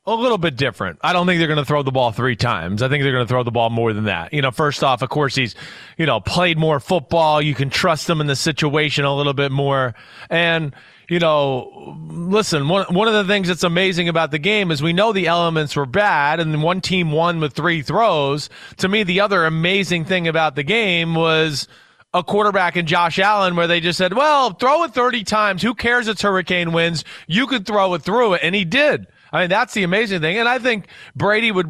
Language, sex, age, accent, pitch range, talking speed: English, male, 30-49, American, 150-190 Hz, 240 wpm